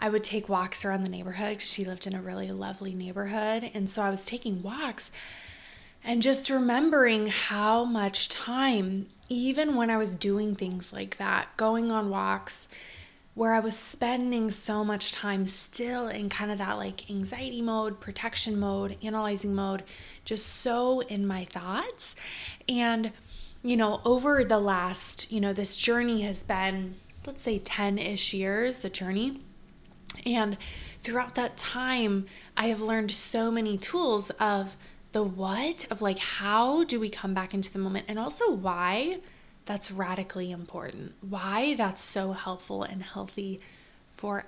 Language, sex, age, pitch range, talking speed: English, female, 20-39, 195-230 Hz, 155 wpm